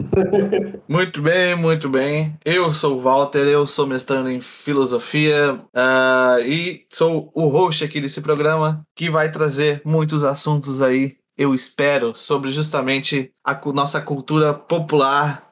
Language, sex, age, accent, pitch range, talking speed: Portuguese, male, 20-39, Brazilian, 135-180 Hz, 130 wpm